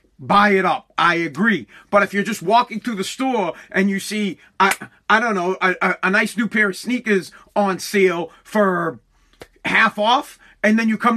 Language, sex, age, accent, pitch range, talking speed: English, male, 40-59, American, 180-230 Hz, 200 wpm